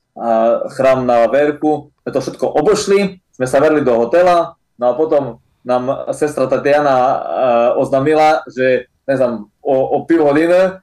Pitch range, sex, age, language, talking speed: 125-155 Hz, male, 20-39, Slovak, 145 wpm